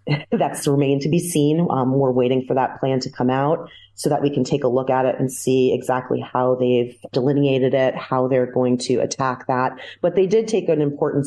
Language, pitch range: English, 125-145 Hz